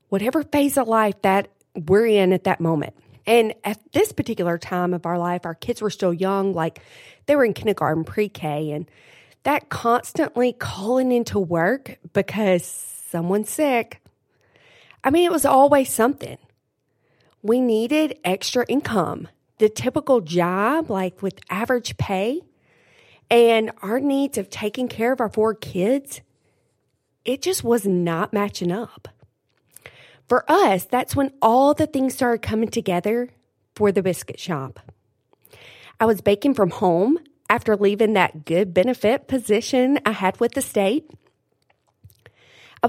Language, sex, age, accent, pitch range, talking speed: English, female, 40-59, American, 180-250 Hz, 145 wpm